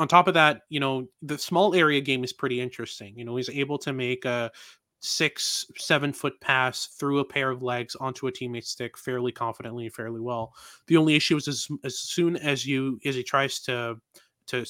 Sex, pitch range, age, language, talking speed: male, 125-145 Hz, 20-39, English, 210 wpm